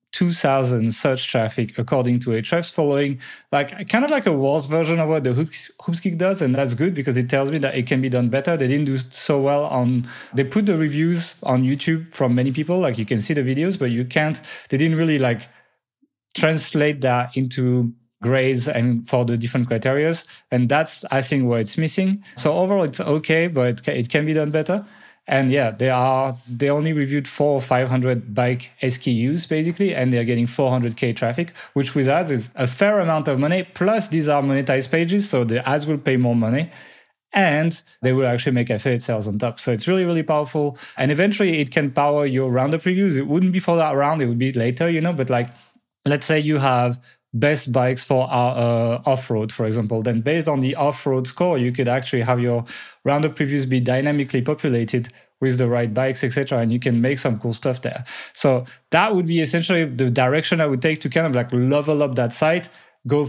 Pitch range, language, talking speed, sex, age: 125-155 Hz, English, 215 wpm, male, 30-49